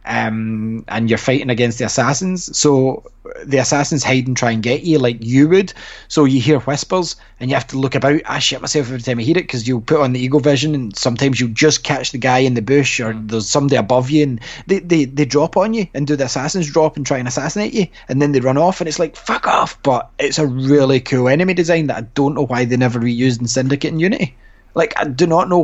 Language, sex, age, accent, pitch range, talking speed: English, male, 20-39, British, 120-150 Hz, 255 wpm